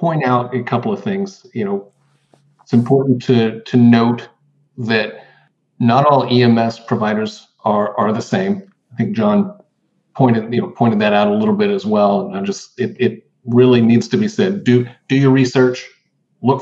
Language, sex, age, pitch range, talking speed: English, male, 50-69, 115-150 Hz, 185 wpm